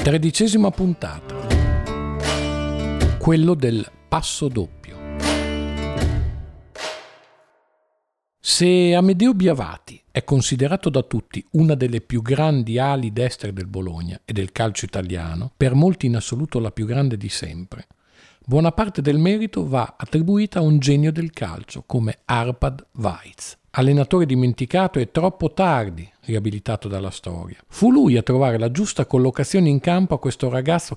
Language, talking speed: Italian, 130 wpm